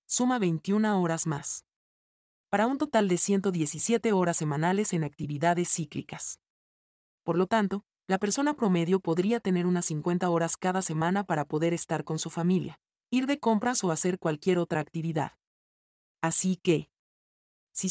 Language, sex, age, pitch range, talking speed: Spanish, male, 40-59, 160-195 Hz, 145 wpm